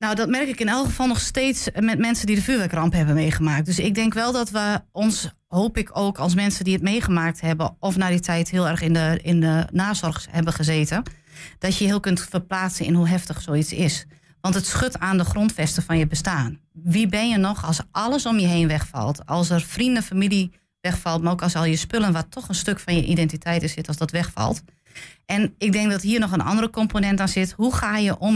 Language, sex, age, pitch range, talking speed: Dutch, female, 30-49, 165-205 Hz, 240 wpm